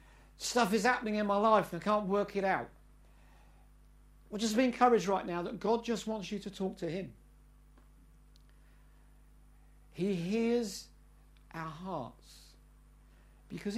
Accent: British